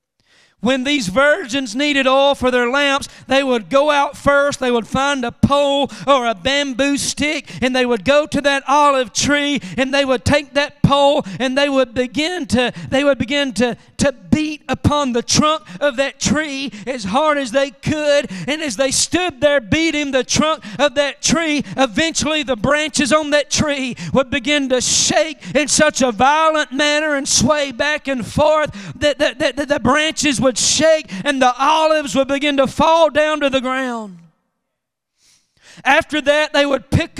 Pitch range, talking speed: 260-295 Hz, 175 wpm